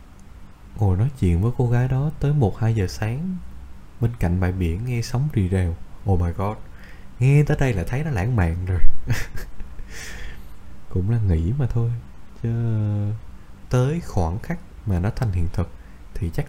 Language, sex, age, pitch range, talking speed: Vietnamese, male, 20-39, 85-115 Hz, 170 wpm